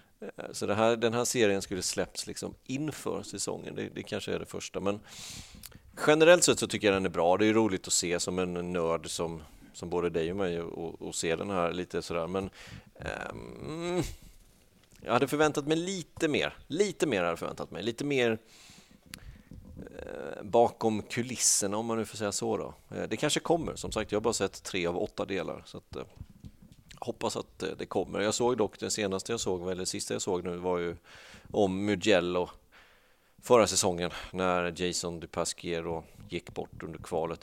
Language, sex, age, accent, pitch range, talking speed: Swedish, male, 30-49, native, 85-105 Hz, 190 wpm